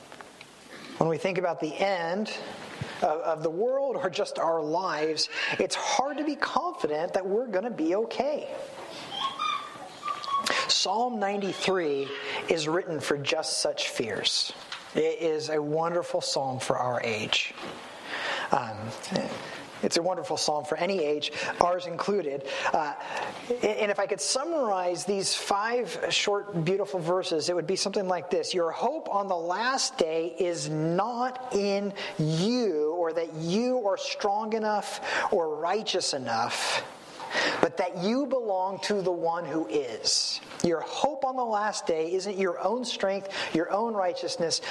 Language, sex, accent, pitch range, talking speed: English, male, American, 170-260 Hz, 145 wpm